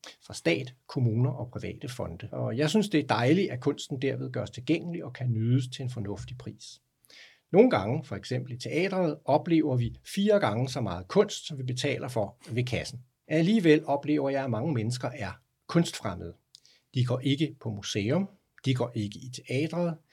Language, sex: Danish, male